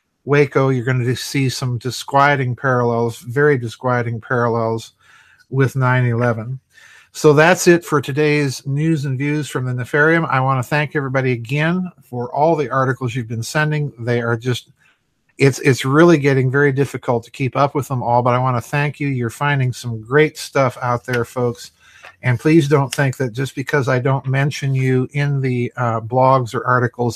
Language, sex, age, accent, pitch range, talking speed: English, male, 50-69, American, 120-145 Hz, 185 wpm